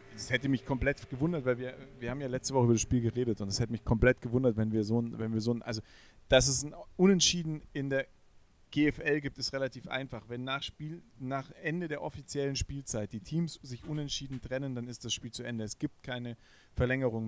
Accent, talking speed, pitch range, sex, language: German, 235 wpm, 115-135 Hz, male, German